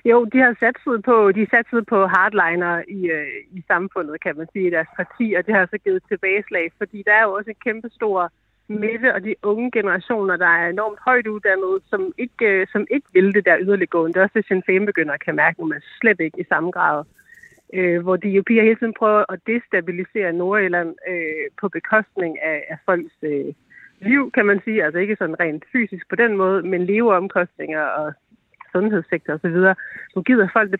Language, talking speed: Danish, 205 wpm